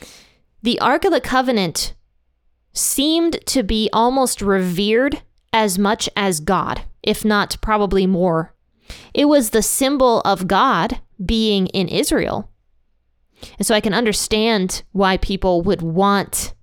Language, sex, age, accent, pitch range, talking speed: English, female, 20-39, American, 185-235 Hz, 130 wpm